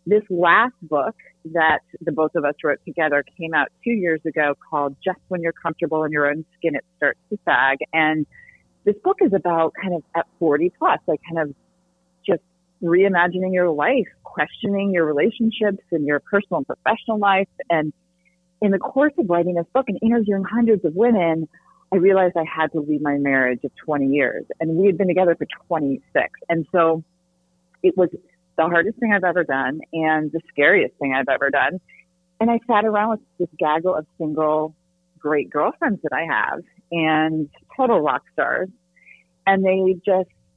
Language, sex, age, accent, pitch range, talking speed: English, female, 40-59, American, 160-205 Hz, 180 wpm